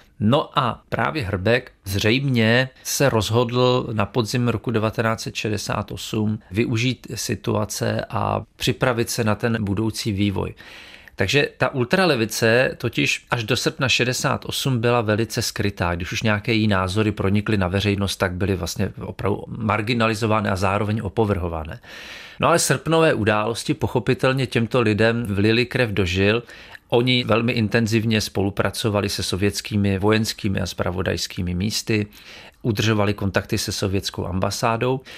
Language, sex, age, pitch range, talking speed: Czech, male, 40-59, 100-125 Hz, 125 wpm